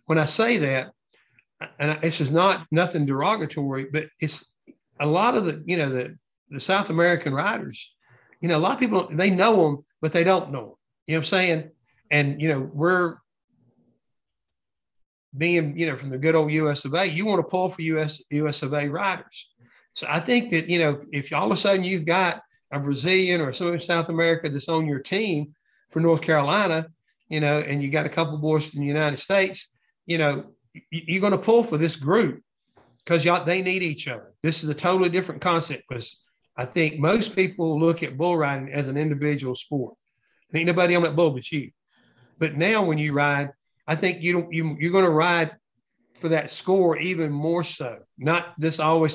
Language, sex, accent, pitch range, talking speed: English, male, American, 145-175 Hz, 210 wpm